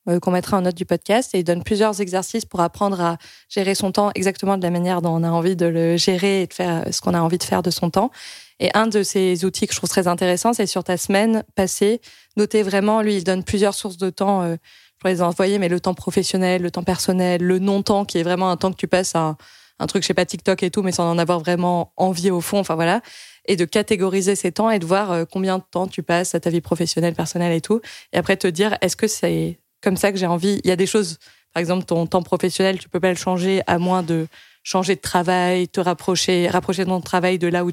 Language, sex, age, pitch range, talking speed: French, female, 20-39, 175-195 Hz, 265 wpm